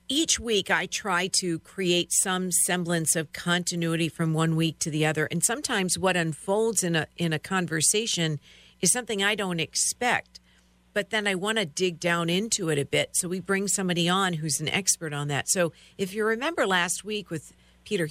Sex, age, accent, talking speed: female, 50-69, American, 195 wpm